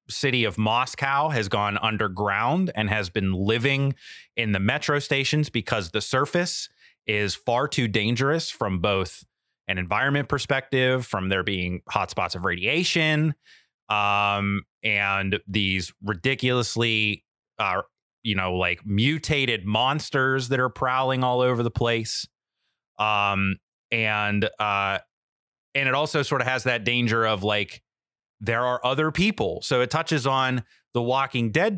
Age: 30-49